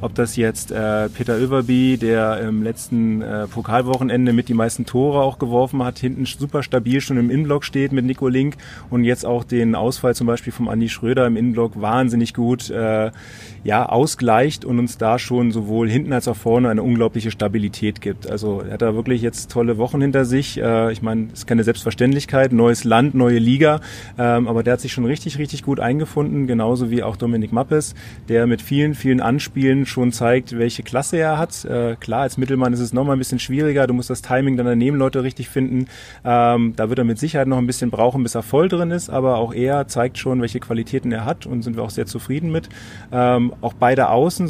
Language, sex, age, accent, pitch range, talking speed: German, male, 30-49, German, 115-135 Hz, 215 wpm